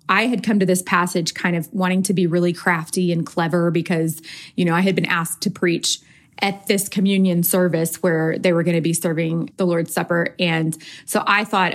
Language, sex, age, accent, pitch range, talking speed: English, female, 20-39, American, 165-195 Hz, 215 wpm